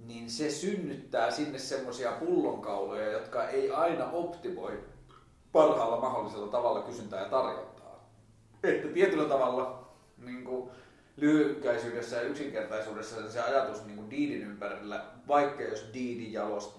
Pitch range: 110-145 Hz